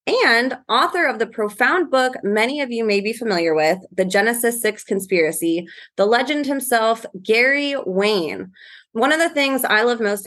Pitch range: 195-250 Hz